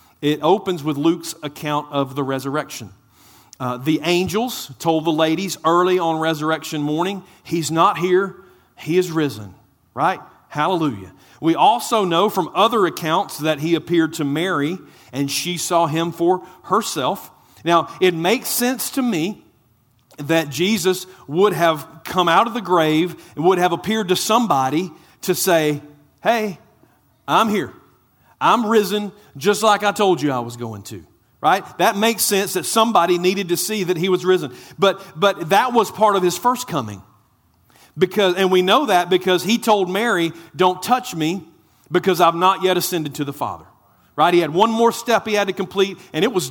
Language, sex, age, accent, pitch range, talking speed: English, male, 40-59, American, 155-195 Hz, 175 wpm